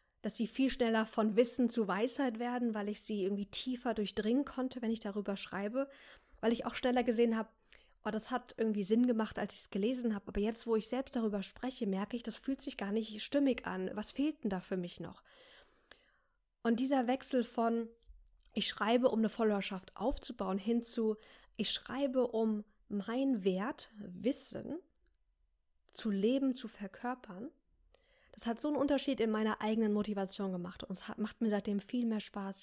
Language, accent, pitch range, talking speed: German, German, 200-240 Hz, 180 wpm